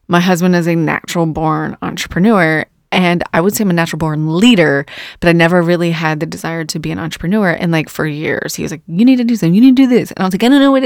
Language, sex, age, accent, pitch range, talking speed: English, female, 20-39, American, 160-185 Hz, 290 wpm